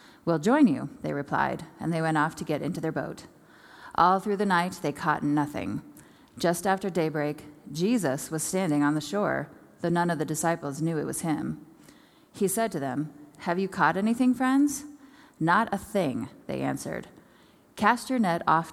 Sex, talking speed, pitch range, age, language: female, 185 wpm, 155-195 Hz, 30-49, English